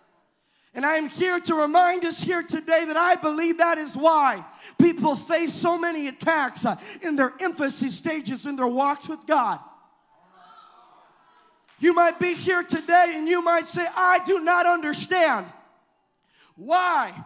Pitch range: 260-320 Hz